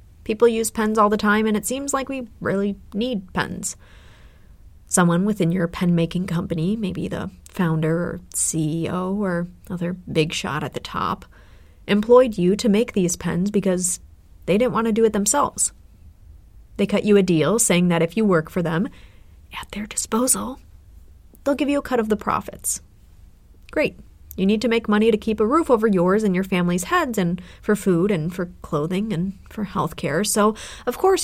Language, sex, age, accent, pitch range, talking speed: English, female, 30-49, American, 160-215 Hz, 185 wpm